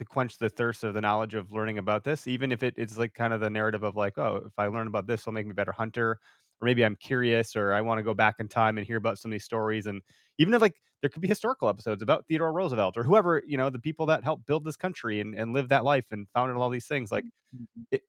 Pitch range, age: 115-150 Hz, 30-49